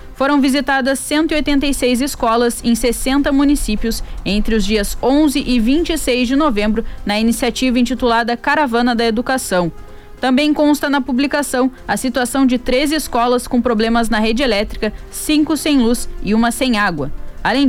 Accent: Brazilian